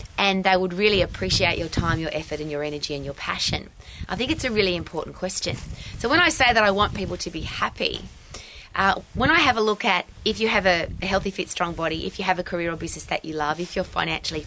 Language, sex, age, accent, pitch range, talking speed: English, female, 20-39, Australian, 165-210 Hz, 255 wpm